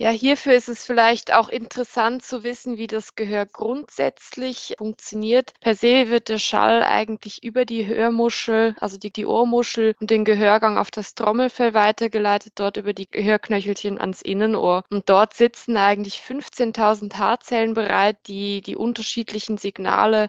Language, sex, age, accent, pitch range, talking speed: German, female, 20-39, German, 200-230 Hz, 150 wpm